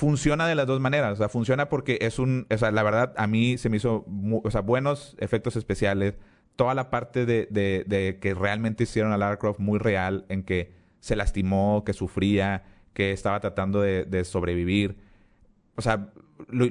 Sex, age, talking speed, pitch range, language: male, 30-49, 200 wpm, 95-120 Hz, Spanish